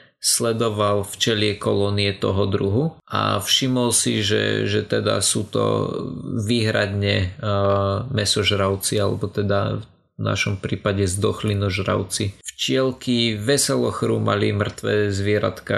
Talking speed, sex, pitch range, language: 100 wpm, male, 100-120 Hz, Slovak